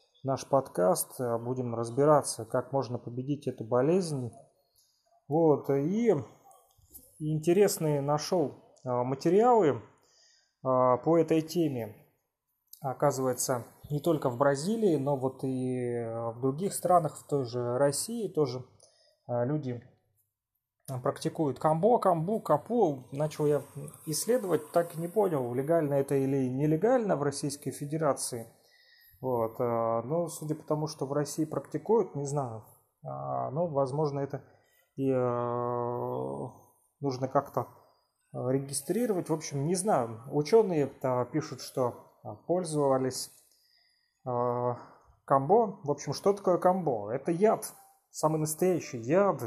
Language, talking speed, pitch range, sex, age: Russian, 110 wpm, 125-170 Hz, male, 30-49